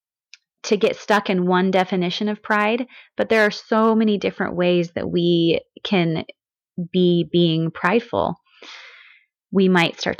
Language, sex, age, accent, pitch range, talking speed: English, female, 30-49, American, 190-235 Hz, 140 wpm